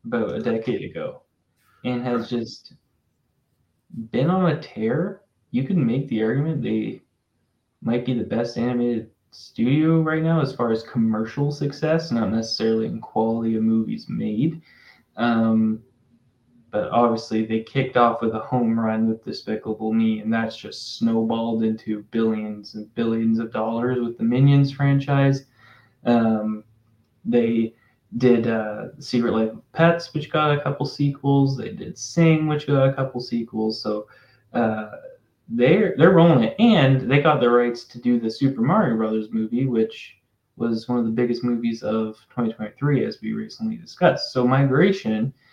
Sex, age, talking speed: male, 10-29, 155 wpm